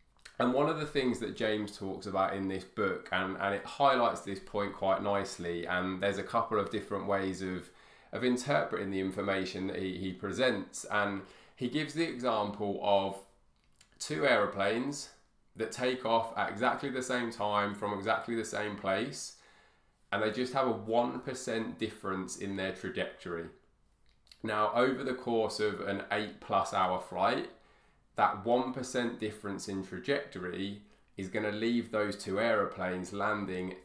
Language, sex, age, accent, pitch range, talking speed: English, male, 20-39, British, 95-115 Hz, 160 wpm